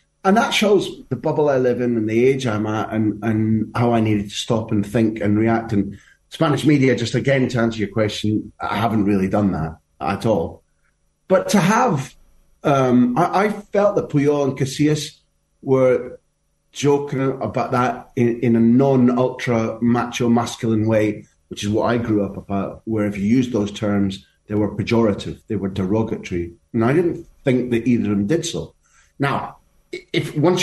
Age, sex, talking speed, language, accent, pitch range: 30-49, male, 180 wpm, English, British, 105-135 Hz